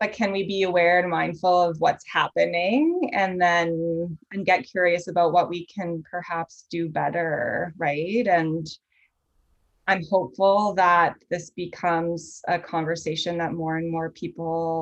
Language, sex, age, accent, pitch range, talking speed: English, female, 20-39, American, 170-190 Hz, 145 wpm